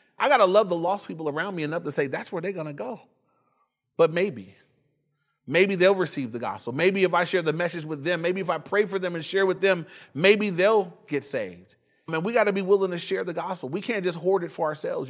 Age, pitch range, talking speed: 30-49, 145-200 Hz, 260 wpm